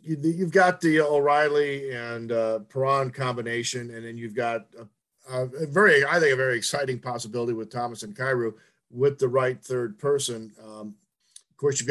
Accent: American